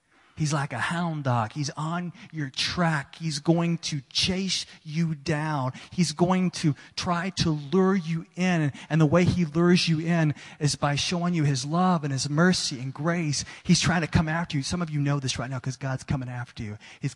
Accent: American